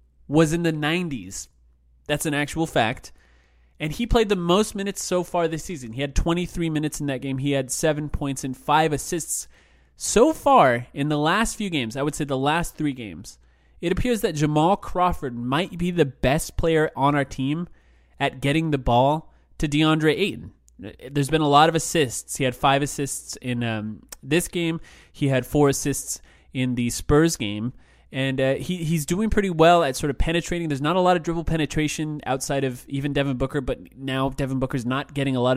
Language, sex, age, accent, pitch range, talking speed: English, male, 20-39, American, 120-155 Hz, 200 wpm